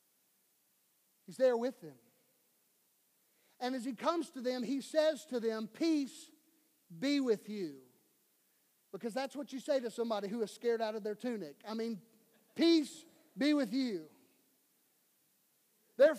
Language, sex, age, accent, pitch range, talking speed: English, male, 50-69, American, 225-280 Hz, 145 wpm